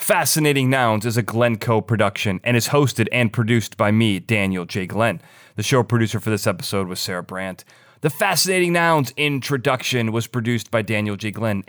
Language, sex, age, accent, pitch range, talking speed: English, male, 30-49, American, 100-140 Hz, 185 wpm